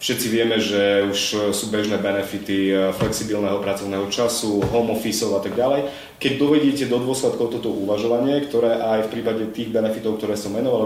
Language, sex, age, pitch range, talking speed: Slovak, male, 30-49, 110-125 Hz, 165 wpm